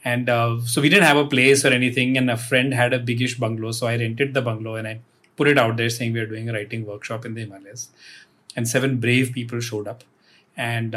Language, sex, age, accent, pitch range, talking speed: English, male, 30-49, Indian, 115-140 Hz, 245 wpm